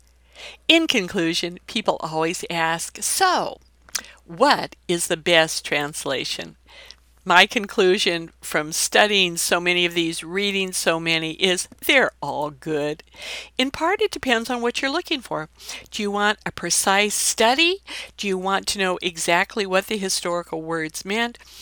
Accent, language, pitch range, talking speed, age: American, English, 165-215 Hz, 145 wpm, 60-79